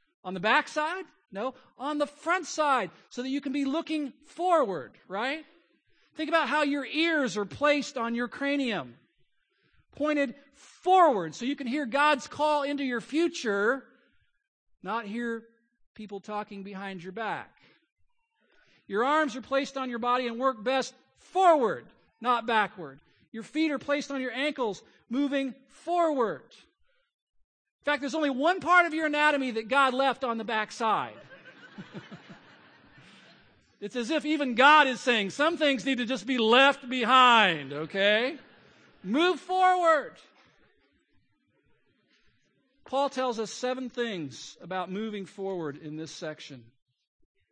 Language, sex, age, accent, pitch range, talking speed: English, male, 50-69, American, 200-290 Hz, 140 wpm